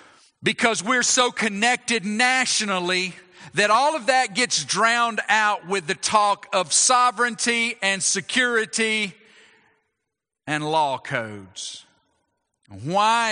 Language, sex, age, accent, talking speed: English, male, 50-69, American, 105 wpm